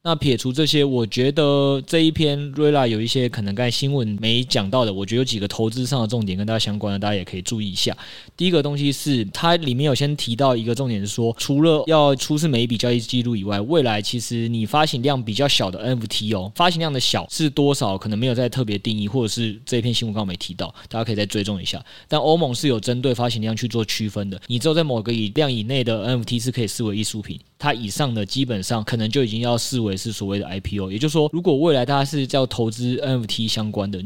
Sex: male